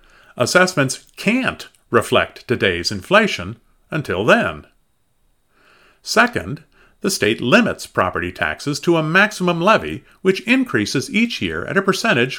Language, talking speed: English, 115 wpm